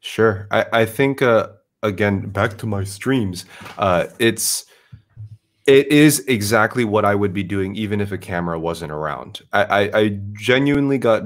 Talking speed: 160 wpm